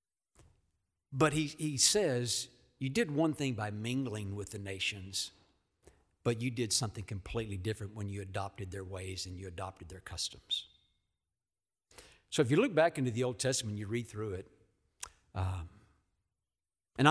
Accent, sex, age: American, male, 60-79